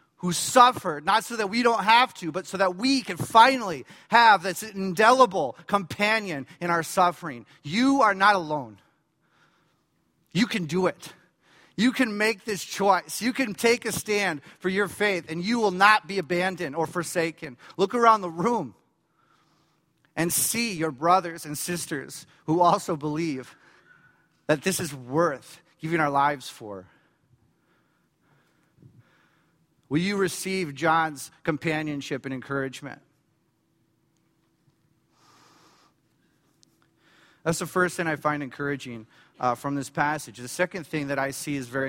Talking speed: 140 wpm